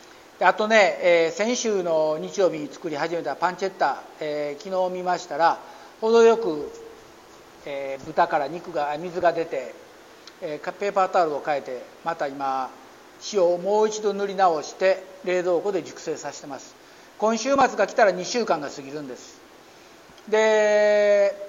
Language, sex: Japanese, male